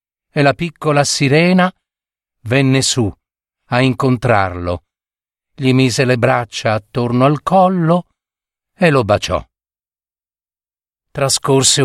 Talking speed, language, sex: 95 wpm, Italian, male